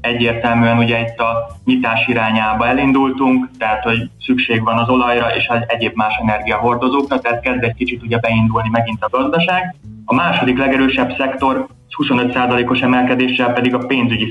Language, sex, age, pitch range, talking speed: Hungarian, male, 20-39, 110-130 Hz, 150 wpm